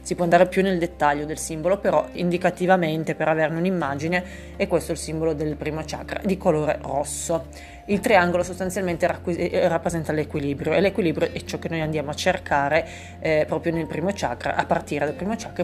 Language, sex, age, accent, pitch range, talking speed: Italian, female, 30-49, native, 155-180 Hz, 180 wpm